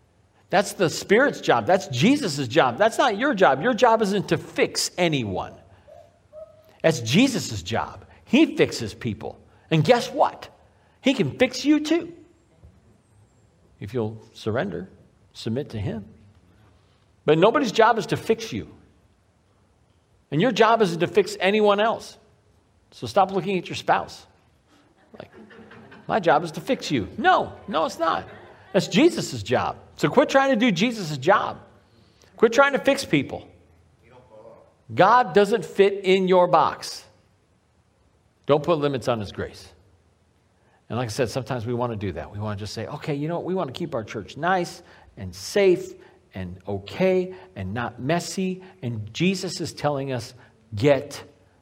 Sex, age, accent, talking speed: male, 50-69, American, 155 wpm